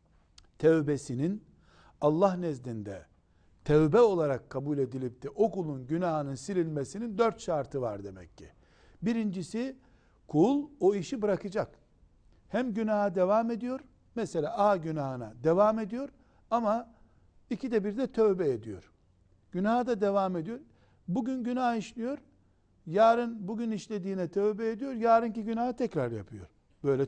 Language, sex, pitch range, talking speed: Turkish, male, 135-220 Hz, 120 wpm